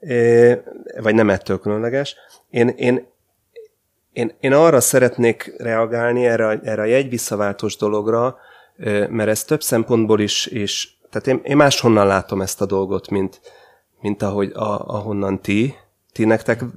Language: Hungarian